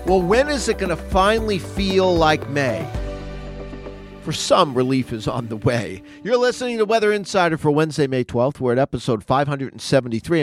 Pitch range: 120-180 Hz